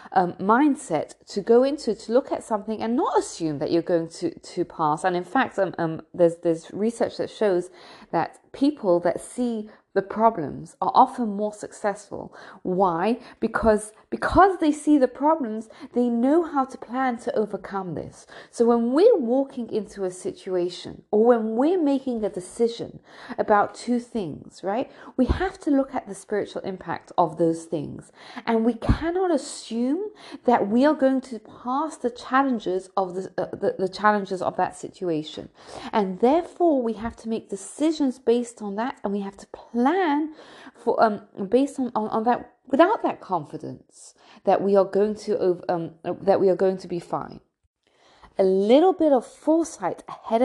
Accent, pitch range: British, 195-270 Hz